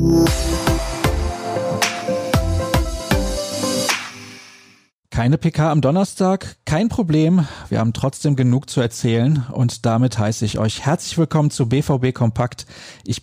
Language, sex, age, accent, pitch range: German, male, 40-59, German, 120-170 Hz